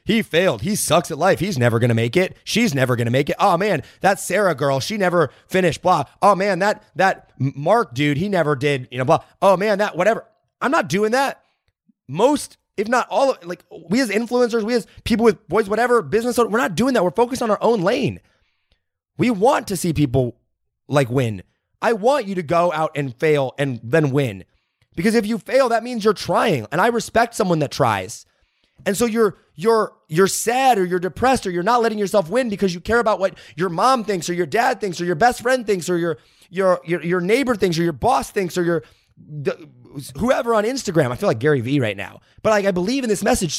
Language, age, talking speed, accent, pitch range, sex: English, 30-49, 235 wpm, American, 145-225 Hz, male